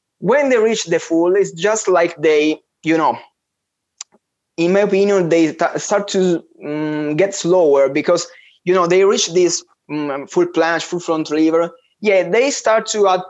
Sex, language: male, English